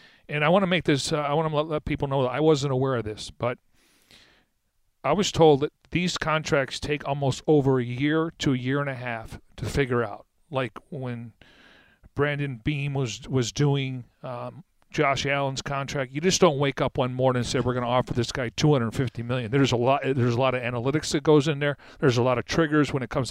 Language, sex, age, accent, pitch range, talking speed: English, male, 40-59, American, 125-150 Hz, 230 wpm